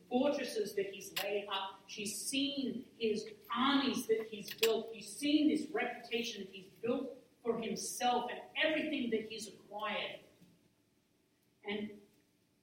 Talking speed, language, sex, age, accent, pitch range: 130 wpm, English, female, 40-59, American, 165-225 Hz